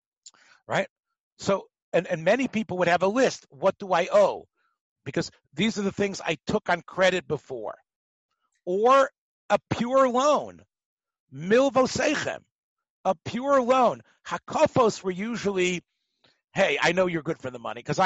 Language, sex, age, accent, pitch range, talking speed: English, male, 50-69, American, 170-225 Hz, 150 wpm